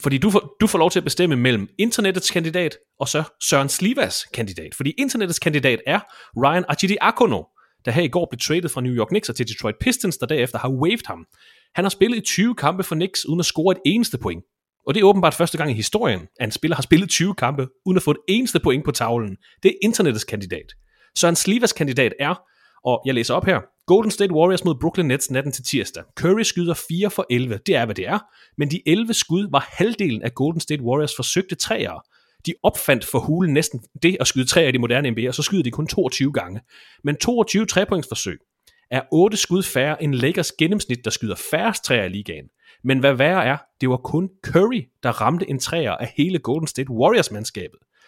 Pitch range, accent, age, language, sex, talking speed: 130-185 Hz, native, 30-49, Danish, male, 220 wpm